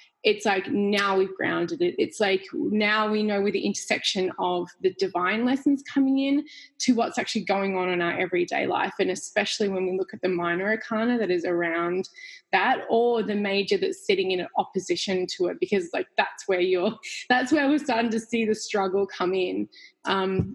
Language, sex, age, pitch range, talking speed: English, female, 20-39, 190-240 Hz, 195 wpm